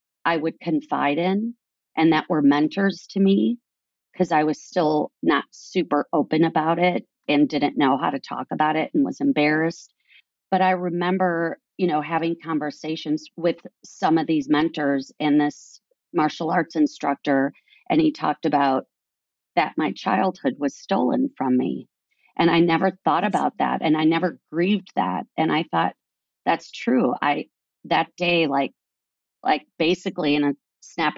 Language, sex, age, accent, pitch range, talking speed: English, female, 40-59, American, 145-185 Hz, 160 wpm